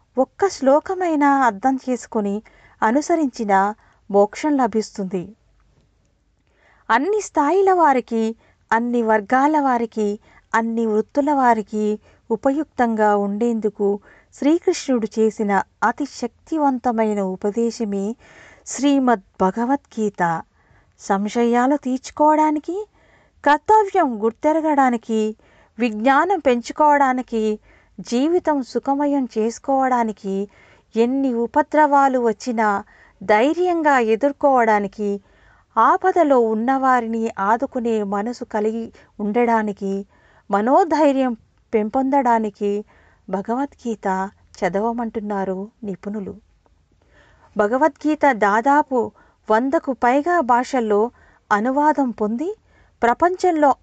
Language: Telugu